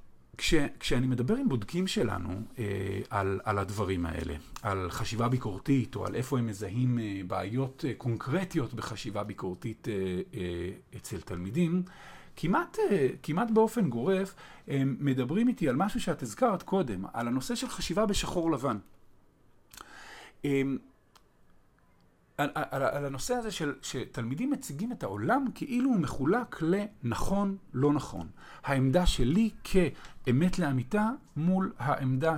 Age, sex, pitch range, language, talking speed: 50-69, male, 115-185 Hz, English, 115 wpm